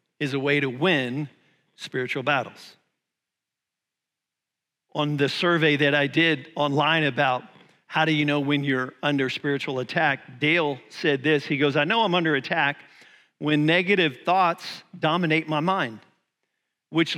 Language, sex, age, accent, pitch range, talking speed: English, male, 50-69, American, 145-170 Hz, 145 wpm